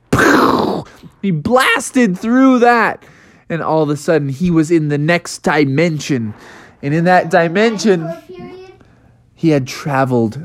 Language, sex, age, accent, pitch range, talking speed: English, male, 20-39, American, 140-195 Hz, 125 wpm